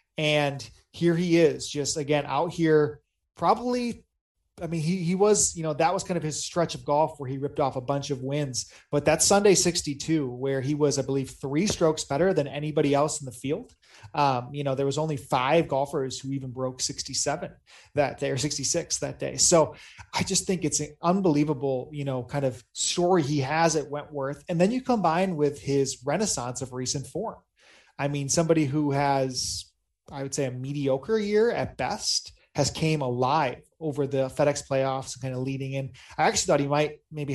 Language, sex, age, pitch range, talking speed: English, male, 30-49, 135-160 Hz, 200 wpm